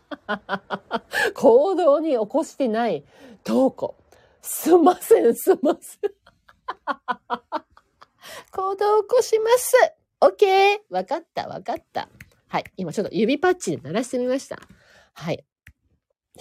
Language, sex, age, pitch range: Japanese, female, 40-59, 225-360 Hz